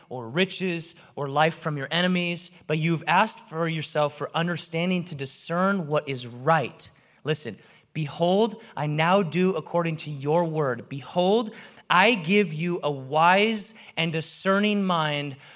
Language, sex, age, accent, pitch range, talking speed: English, male, 30-49, American, 155-195 Hz, 145 wpm